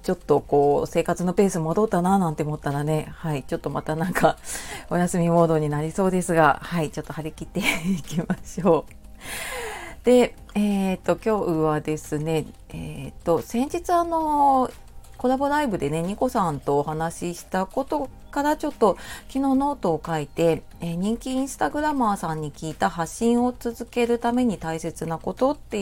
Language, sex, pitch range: Japanese, female, 160-225 Hz